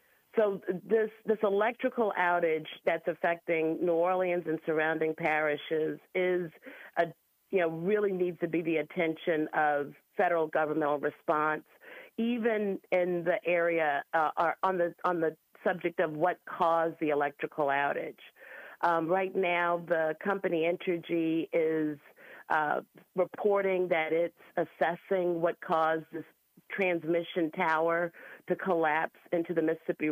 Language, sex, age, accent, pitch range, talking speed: English, female, 50-69, American, 155-180 Hz, 130 wpm